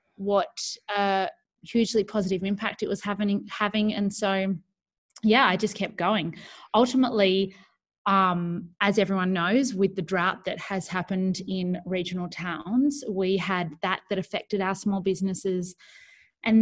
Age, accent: 20-39, Australian